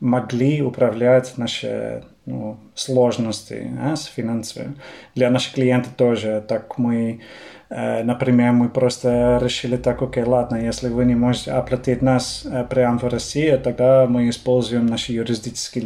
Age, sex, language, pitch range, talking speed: 20-39, male, Russian, 115-130 Hz, 135 wpm